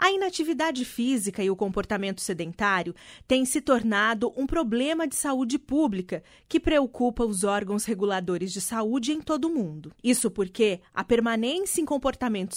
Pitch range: 205-270 Hz